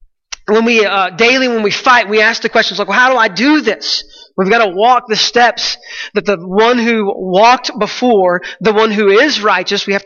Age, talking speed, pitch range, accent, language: 30-49, 220 wpm, 190-235 Hz, American, English